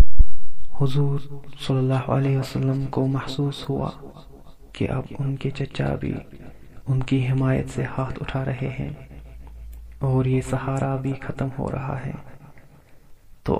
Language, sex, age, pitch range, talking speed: Urdu, male, 20-39, 130-140 Hz, 135 wpm